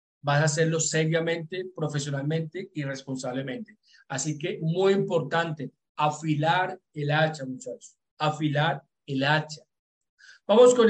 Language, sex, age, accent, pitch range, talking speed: Portuguese, male, 40-59, Colombian, 150-185 Hz, 110 wpm